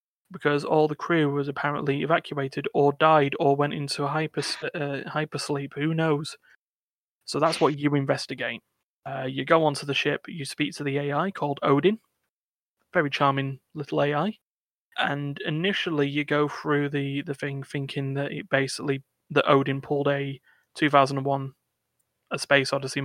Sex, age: male, 30-49